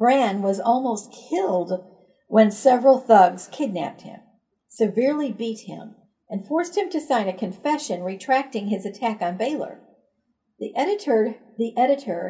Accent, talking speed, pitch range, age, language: American, 130 wpm, 195-255 Hz, 50-69, English